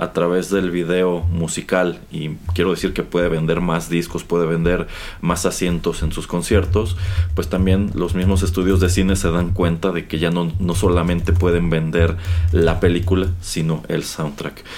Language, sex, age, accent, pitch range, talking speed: Spanish, male, 30-49, Mexican, 85-100 Hz, 175 wpm